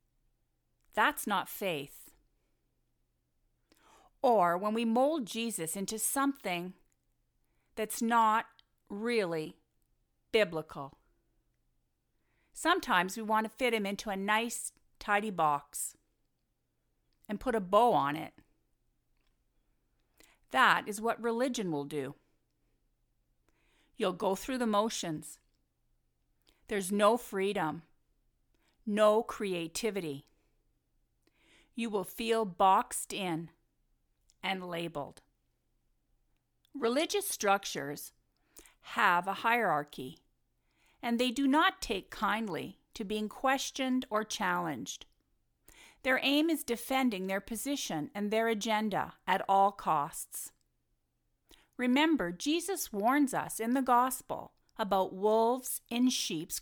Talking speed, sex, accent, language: 100 wpm, female, American, English